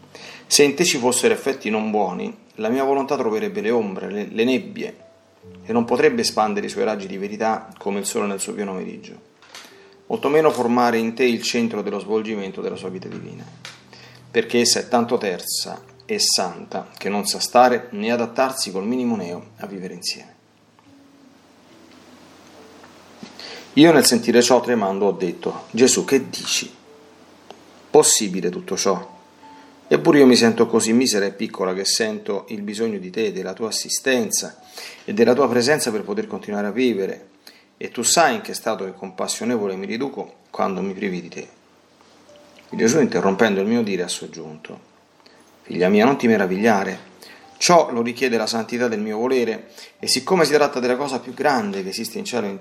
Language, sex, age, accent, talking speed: Italian, male, 40-59, native, 175 wpm